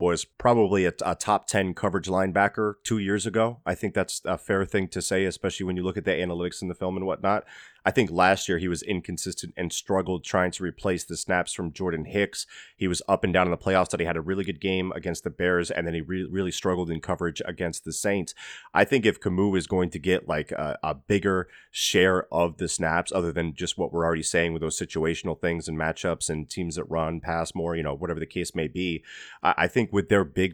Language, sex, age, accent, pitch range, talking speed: English, male, 30-49, American, 85-100 Hz, 245 wpm